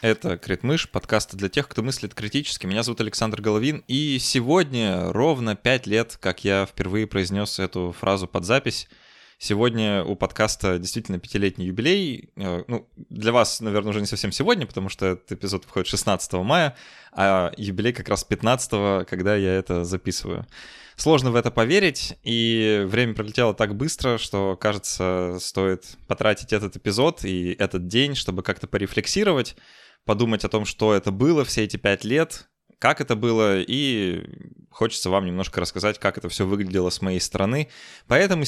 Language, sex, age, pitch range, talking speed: Russian, male, 20-39, 95-120 Hz, 160 wpm